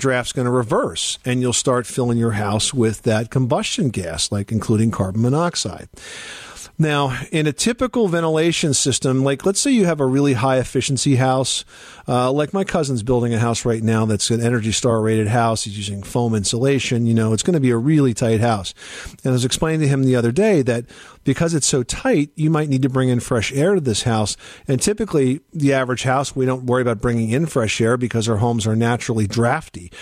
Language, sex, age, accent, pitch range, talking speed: English, male, 50-69, American, 115-140 Hz, 215 wpm